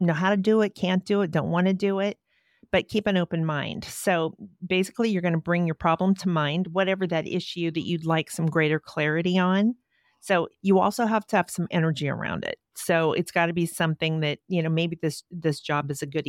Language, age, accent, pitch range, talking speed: English, 40-59, American, 160-190 Hz, 235 wpm